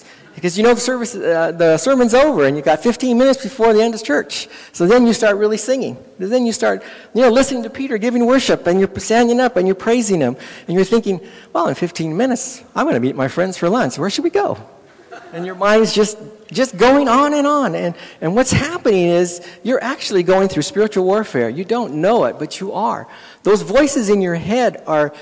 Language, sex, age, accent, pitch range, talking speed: English, male, 50-69, American, 145-225 Hz, 230 wpm